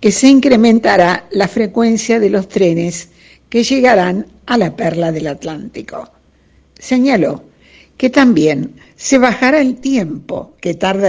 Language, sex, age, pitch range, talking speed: Spanish, female, 60-79, 175-240 Hz, 130 wpm